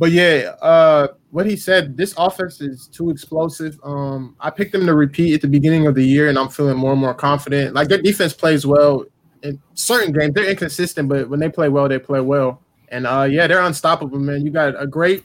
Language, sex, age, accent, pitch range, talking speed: English, male, 20-39, American, 140-170 Hz, 230 wpm